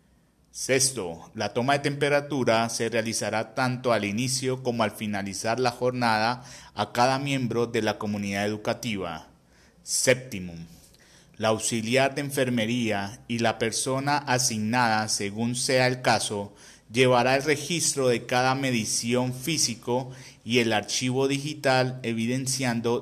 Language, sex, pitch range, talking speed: Spanish, male, 110-130 Hz, 125 wpm